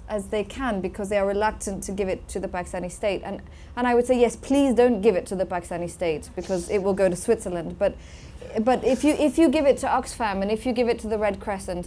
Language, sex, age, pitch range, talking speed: English, female, 20-39, 180-220 Hz, 270 wpm